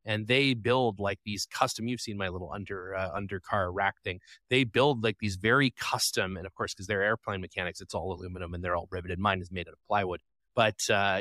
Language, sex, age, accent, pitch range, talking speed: English, male, 30-49, American, 100-125 Hz, 230 wpm